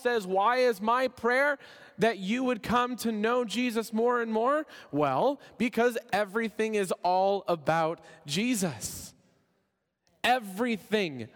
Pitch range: 155-225 Hz